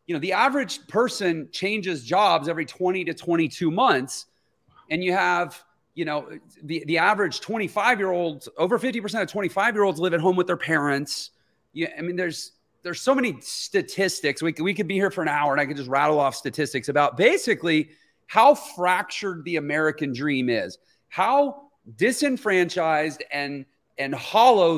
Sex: male